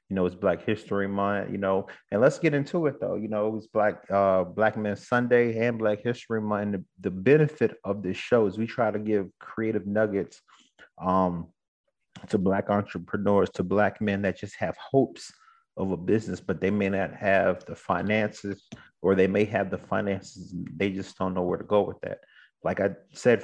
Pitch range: 100-115 Hz